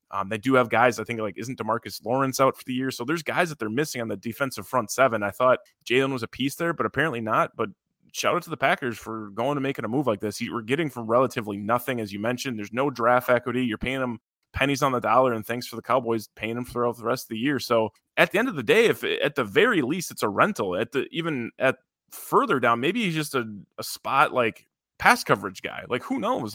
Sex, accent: male, American